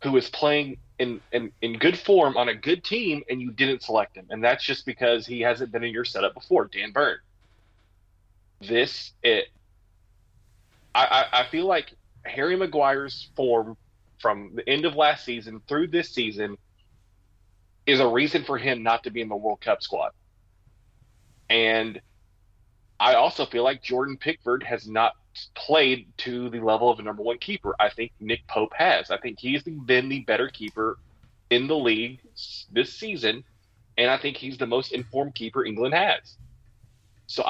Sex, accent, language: male, American, English